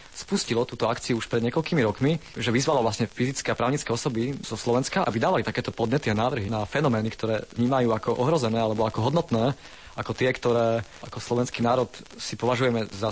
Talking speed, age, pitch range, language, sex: 185 wpm, 30-49, 115-135 Hz, Slovak, male